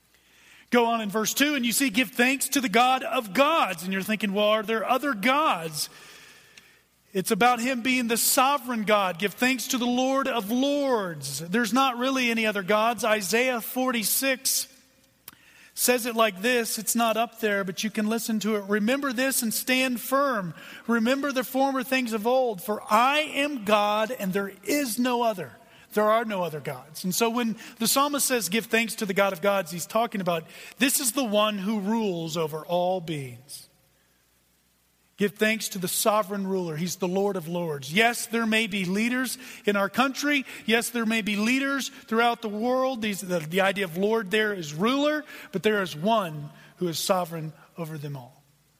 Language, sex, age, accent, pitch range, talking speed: English, male, 40-59, American, 180-250 Hz, 190 wpm